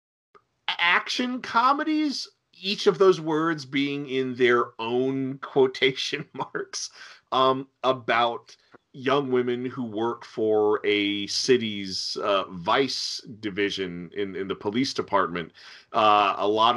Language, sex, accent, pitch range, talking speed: English, male, American, 105-135 Hz, 115 wpm